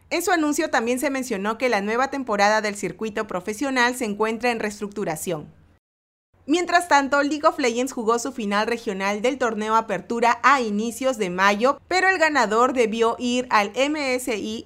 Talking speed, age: 165 wpm, 30-49